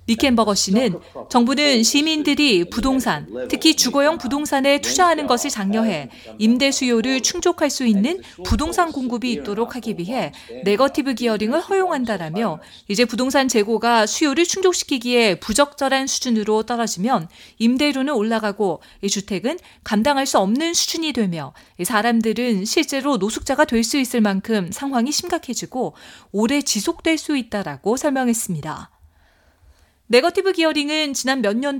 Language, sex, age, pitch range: Korean, female, 40-59, 215-285 Hz